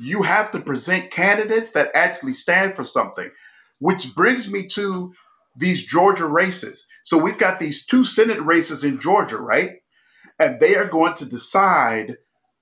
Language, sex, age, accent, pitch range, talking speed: English, male, 40-59, American, 150-235 Hz, 155 wpm